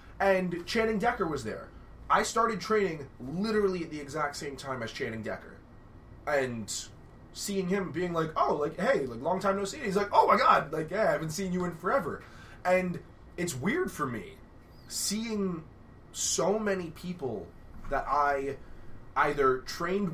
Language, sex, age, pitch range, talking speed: English, male, 20-39, 115-175 Hz, 165 wpm